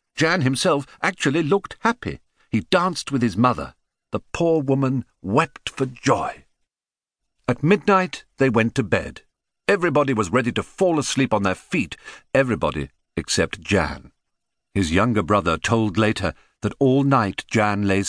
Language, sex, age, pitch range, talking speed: English, male, 50-69, 95-130 Hz, 145 wpm